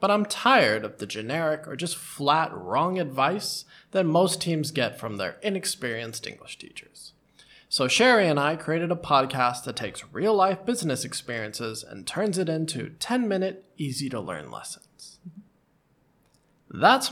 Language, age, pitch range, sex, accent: Chinese, 20-39, 130-200 Hz, male, American